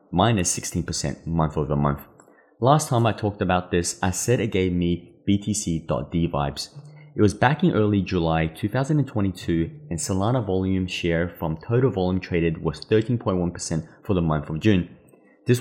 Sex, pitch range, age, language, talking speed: male, 85-115 Hz, 20-39, English, 160 wpm